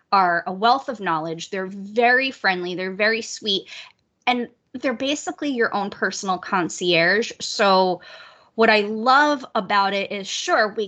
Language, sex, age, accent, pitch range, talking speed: English, female, 20-39, American, 180-235 Hz, 150 wpm